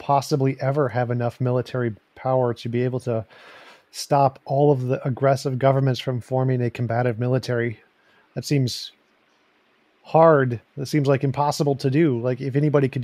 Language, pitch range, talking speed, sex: English, 120-140 Hz, 155 wpm, male